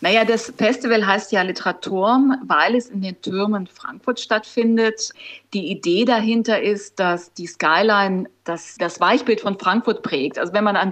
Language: German